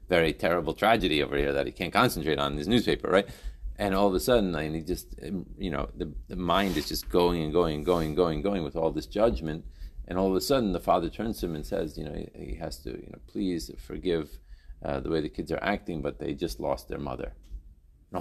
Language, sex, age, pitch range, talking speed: English, male, 40-59, 75-105 Hz, 255 wpm